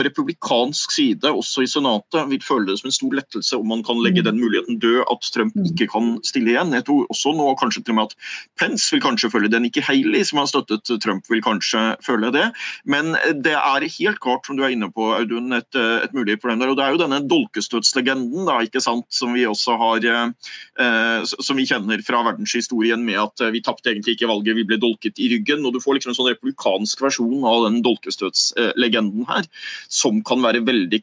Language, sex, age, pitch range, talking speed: English, male, 30-49, 115-145 Hz, 210 wpm